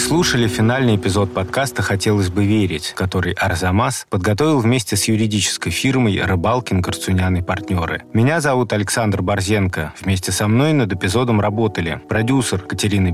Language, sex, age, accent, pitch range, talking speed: Russian, male, 30-49, native, 90-115 Hz, 135 wpm